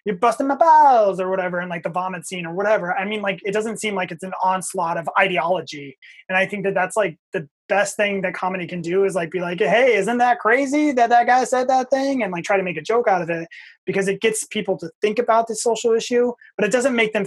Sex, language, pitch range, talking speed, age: male, English, 185-225 Hz, 270 wpm, 20-39